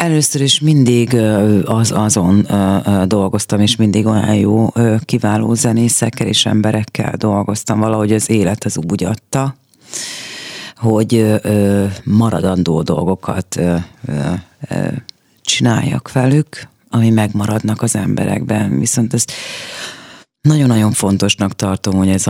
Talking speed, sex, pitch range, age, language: 100 wpm, female, 100-120 Hz, 30-49, Hungarian